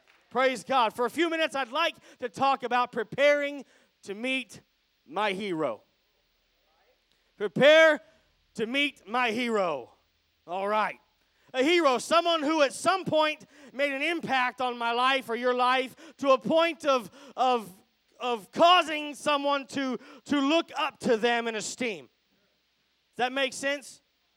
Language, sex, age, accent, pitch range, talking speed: English, male, 30-49, American, 245-300 Hz, 145 wpm